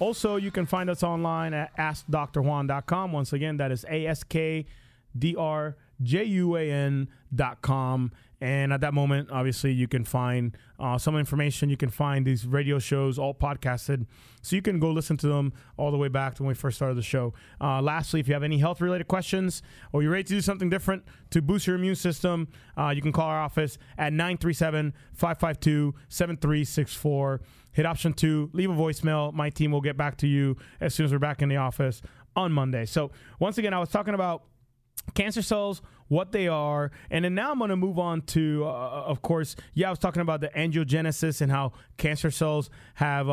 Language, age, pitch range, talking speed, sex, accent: English, 30-49, 140-165 Hz, 190 wpm, male, American